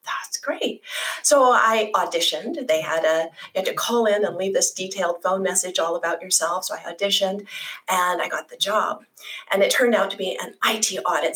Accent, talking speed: American, 205 wpm